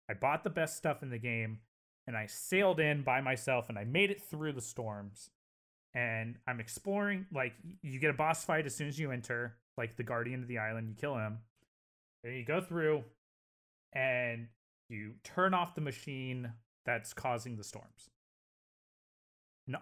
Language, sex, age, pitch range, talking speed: English, male, 30-49, 110-150 Hz, 180 wpm